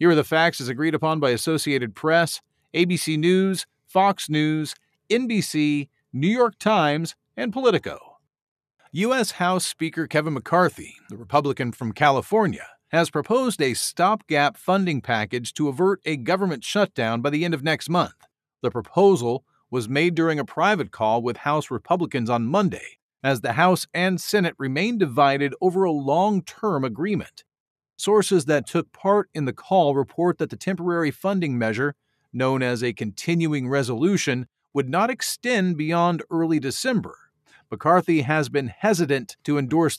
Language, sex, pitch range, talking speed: English, male, 140-185 Hz, 150 wpm